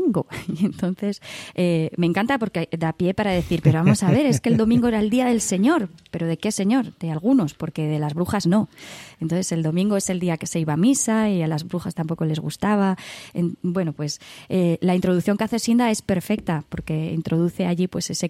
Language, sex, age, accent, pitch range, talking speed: Spanish, female, 20-39, Spanish, 165-205 Hz, 225 wpm